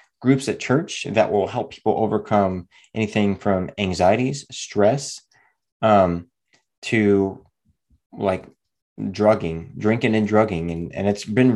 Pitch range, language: 95-120 Hz, English